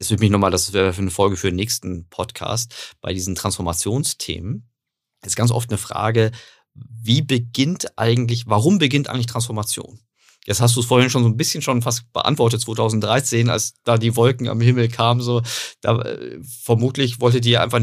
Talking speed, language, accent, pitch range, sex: 180 wpm, German, German, 110-130 Hz, male